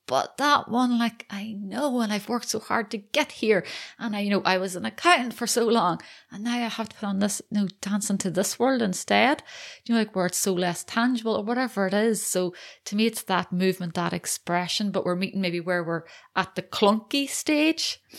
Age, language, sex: 30-49, English, female